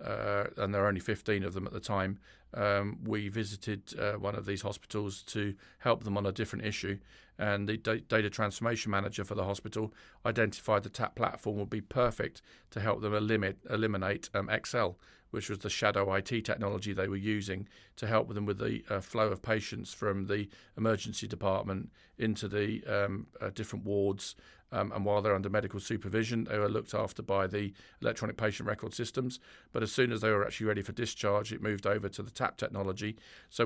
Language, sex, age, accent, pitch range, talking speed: English, male, 40-59, British, 100-110 Hz, 200 wpm